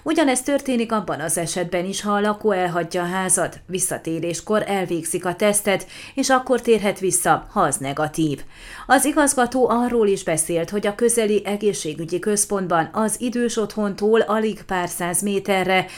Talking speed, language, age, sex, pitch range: 150 wpm, Hungarian, 30-49, female, 175-220 Hz